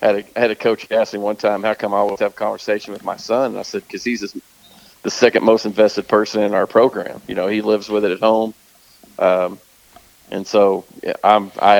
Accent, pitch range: American, 100-110 Hz